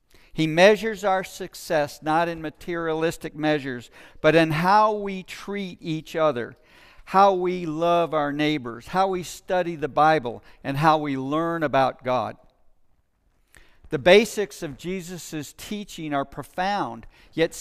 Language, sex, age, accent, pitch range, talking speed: English, male, 50-69, American, 145-185 Hz, 135 wpm